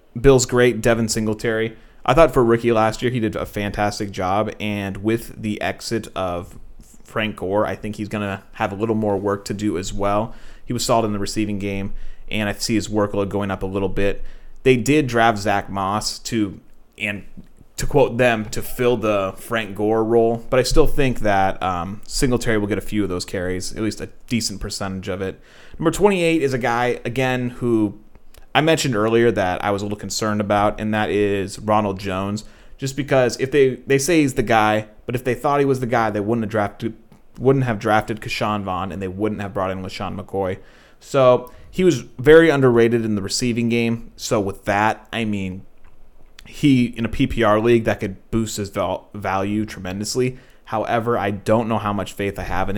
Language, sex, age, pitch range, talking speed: English, male, 30-49, 100-120 Hz, 205 wpm